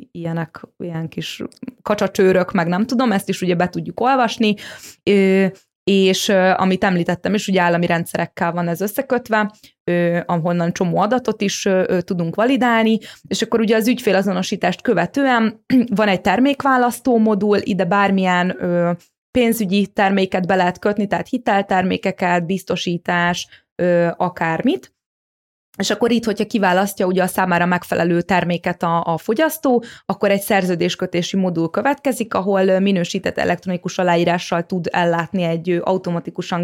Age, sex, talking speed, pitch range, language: 20-39, female, 125 wpm, 175-215 Hz, Hungarian